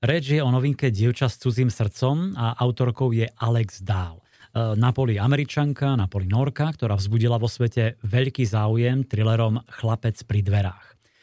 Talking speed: 145 wpm